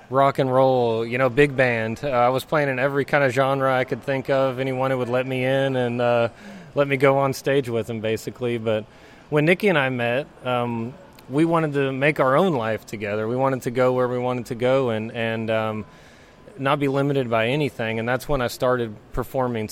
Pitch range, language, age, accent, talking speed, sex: 115-140 Hz, English, 30-49, American, 225 wpm, male